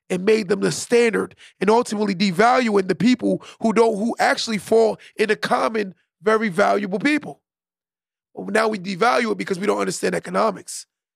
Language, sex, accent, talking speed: English, male, American, 160 wpm